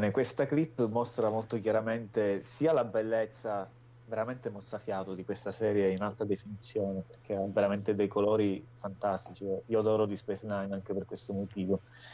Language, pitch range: Italian, 100-120 Hz